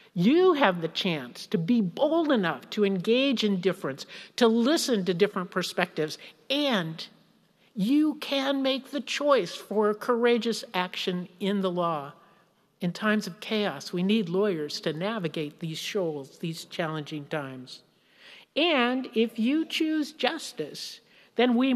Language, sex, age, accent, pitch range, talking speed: English, male, 50-69, American, 190-255 Hz, 140 wpm